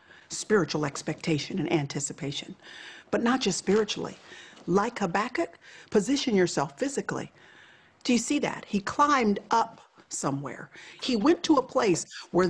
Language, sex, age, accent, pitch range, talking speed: English, female, 50-69, American, 175-265 Hz, 130 wpm